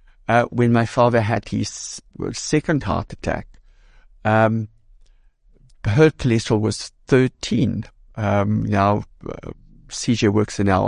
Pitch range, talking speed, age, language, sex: 100-120 Hz, 115 wpm, 60-79, English, male